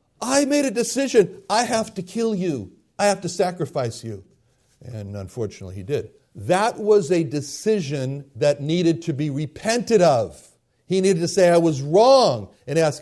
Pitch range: 140-205 Hz